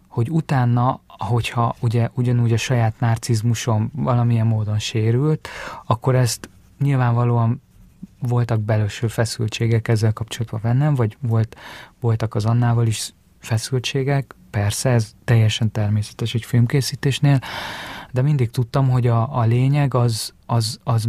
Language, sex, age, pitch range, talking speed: Hungarian, male, 30-49, 115-125 Hz, 115 wpm